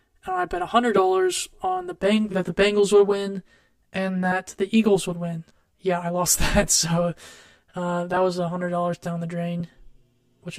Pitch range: 175-200 Hz